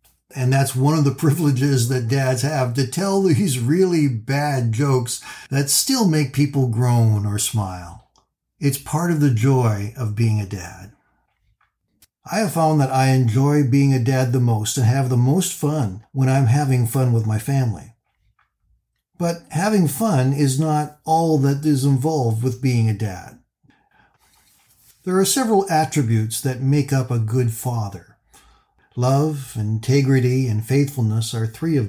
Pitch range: 115-150 Hz